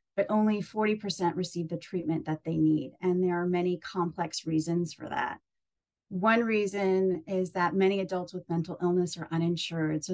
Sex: female